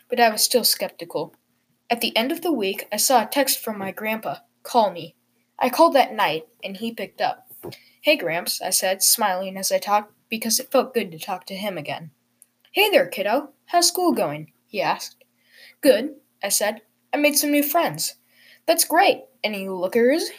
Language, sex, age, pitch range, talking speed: English, female, 10-29, 190-285 Hz, 190 wpm